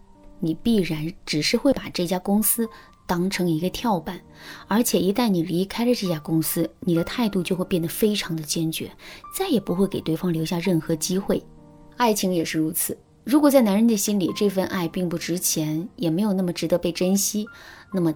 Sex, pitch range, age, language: female, 165-215 Hz, 20-39, Chinese